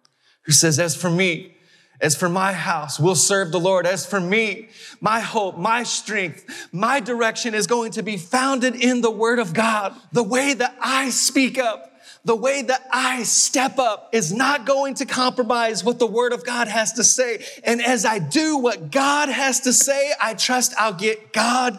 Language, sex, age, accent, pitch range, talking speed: English, male, 30-49, American, 215-265 Hz, 195 wpm